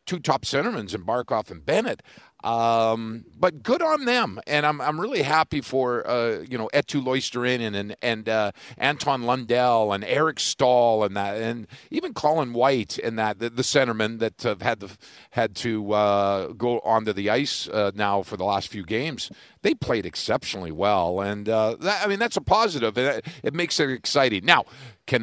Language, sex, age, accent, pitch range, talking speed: English, male, 50-69, American, 105-140 Hz, 190 wpm